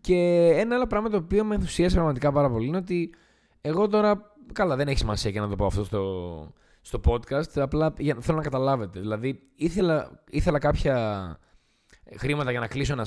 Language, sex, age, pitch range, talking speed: Greek, male, 20-39, 110-180 Hz, 190 wpm